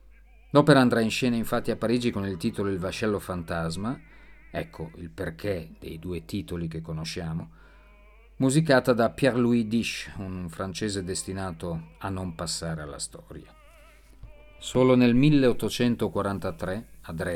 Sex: male